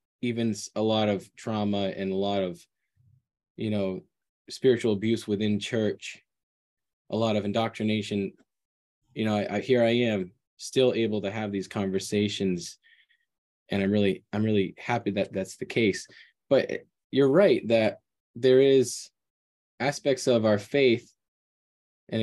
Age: 20-39